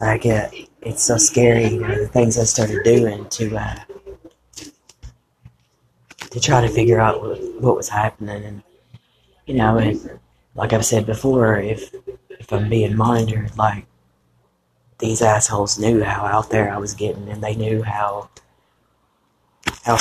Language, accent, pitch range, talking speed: English, American, 105-120 Hz, 155 wpm